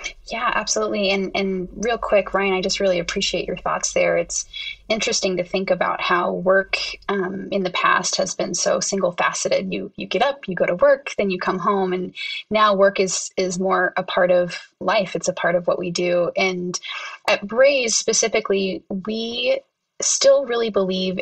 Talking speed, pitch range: 190 wpm, 185-210 Hz